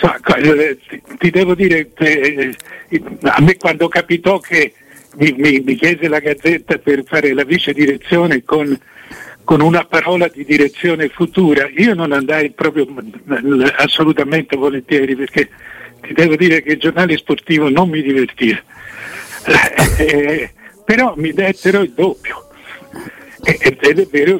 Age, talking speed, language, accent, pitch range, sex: 60-79, 120 wpm, Italian, native, 145-185 Hz, male